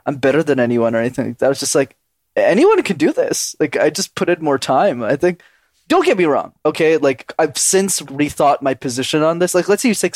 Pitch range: 130-180 Hz